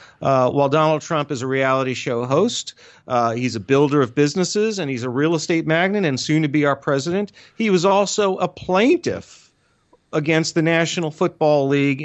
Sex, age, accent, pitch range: male, 40-59, American, 135-165 Hz